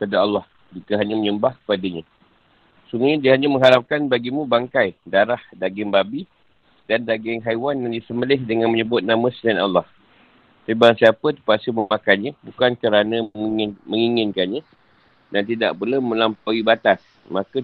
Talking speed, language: 130 wpm, Malay